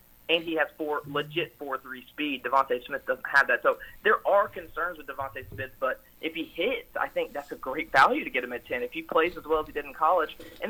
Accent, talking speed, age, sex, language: American, 260 wpm, 30-49, male, English